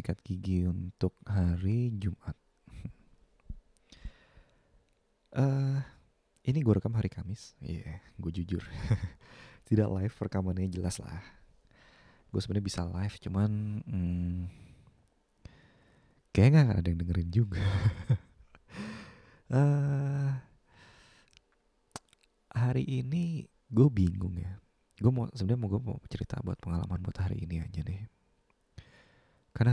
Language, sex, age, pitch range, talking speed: Indonesian, male, 20-39, 90-115 Hz, 105 wpm